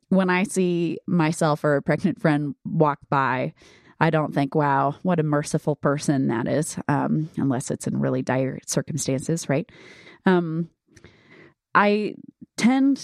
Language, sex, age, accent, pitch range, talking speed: English, female, 30-49, American, 145-190 Hz, 145 wpm